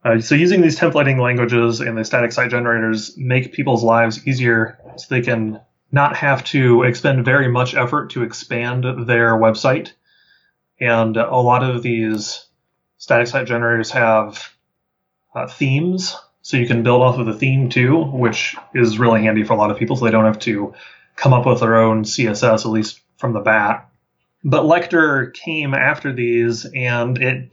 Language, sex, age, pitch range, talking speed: English, male, 30-49, 115-135 Hz, 175 wpm